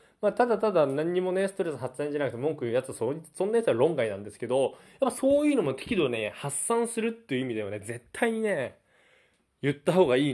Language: Japanese